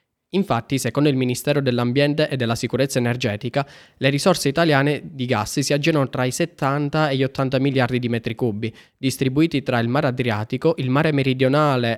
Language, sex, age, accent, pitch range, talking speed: Italian, male, 20-39, native, 120-145 Hz, 170 wpm